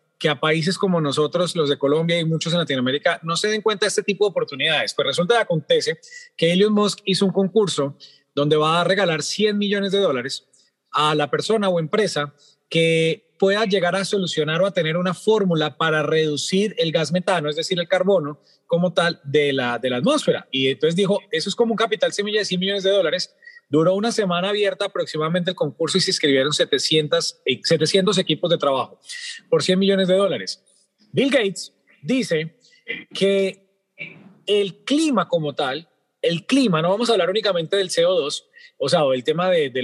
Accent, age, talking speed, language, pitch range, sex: Colombian, 30-49, 195 wpm, Spanish, 155-210 Hz, male